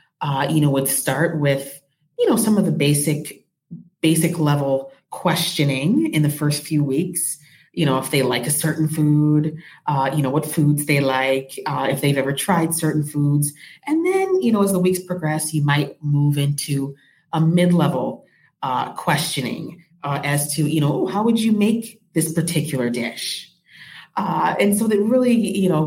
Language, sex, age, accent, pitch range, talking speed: English, female, 30-49, American, 135-180 Hz, 180 wpm